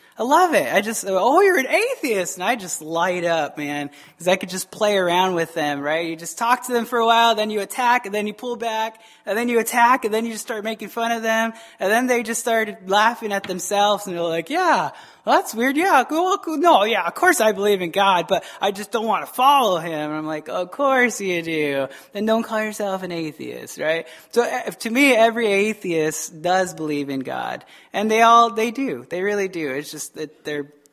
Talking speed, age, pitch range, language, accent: 240 wpm, 20-39, 170-225 Hz, English, American